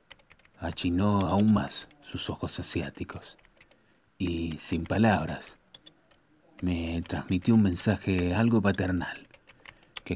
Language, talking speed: Spanish, 95 wpm